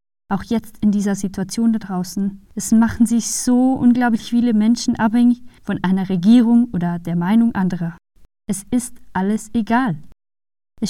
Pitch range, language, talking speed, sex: 185-235 Hz, German, 150 wpm, female